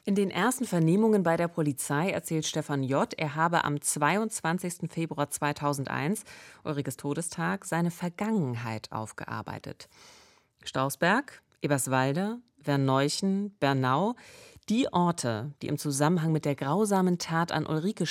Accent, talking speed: German, 120 wpm